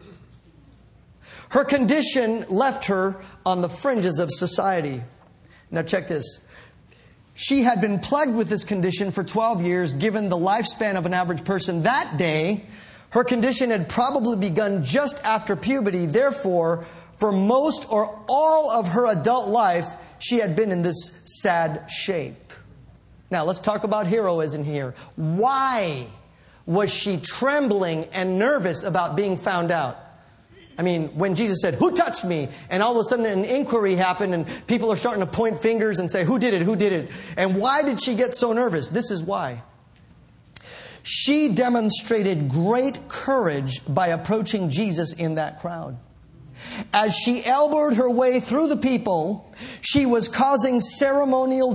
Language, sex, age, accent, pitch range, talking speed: English, male, 40-59, American, 180-250 Hz, 155 wpm